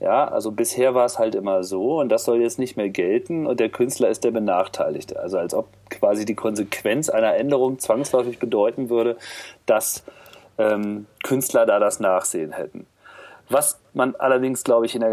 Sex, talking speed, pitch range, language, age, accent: male, 185 wpm, 105-145 Hz, German, 40-59, German